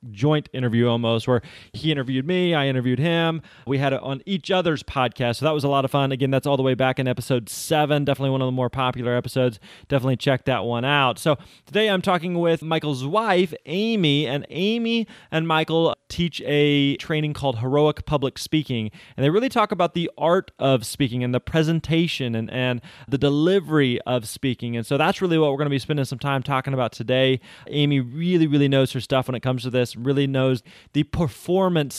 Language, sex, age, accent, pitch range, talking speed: English, male, 20-39, American, 125-160 Hz, 210 wpm